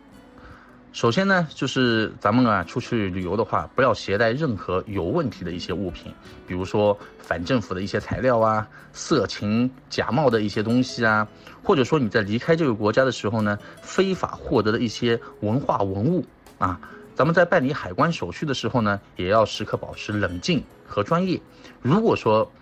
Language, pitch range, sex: English, 95-120 Hz, male